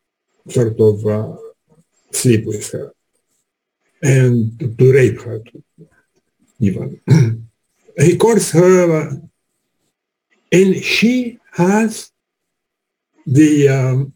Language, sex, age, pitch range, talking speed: English, male, 60-79, 130-185 Hz, 85 wpm